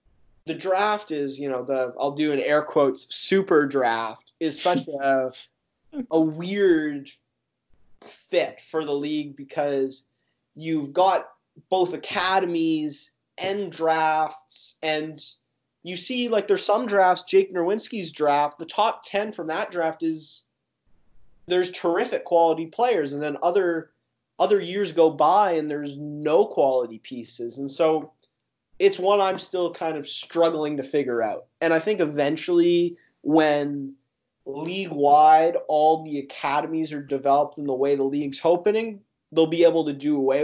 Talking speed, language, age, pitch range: 145 wpm, English, 20-39, 140-170 Hz